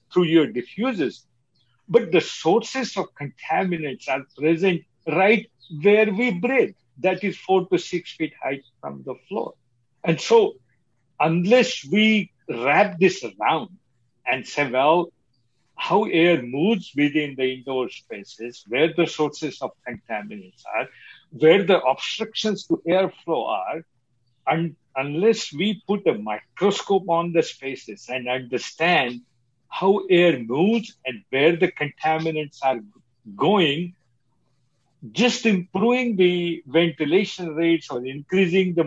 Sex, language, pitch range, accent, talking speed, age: male, English, 130-185 Hz, Indian, 125 wpm, 60-79